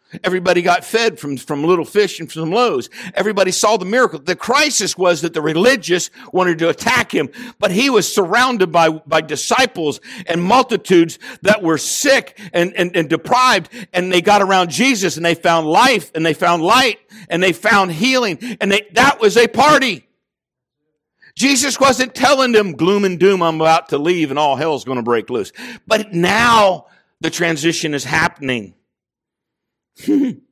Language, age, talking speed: English, 60-79, 170 wpm